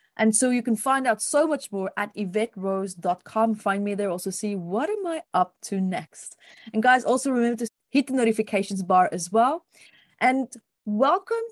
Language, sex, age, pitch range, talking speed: English, female, 30-49, 190-260 Hz, 180 wpm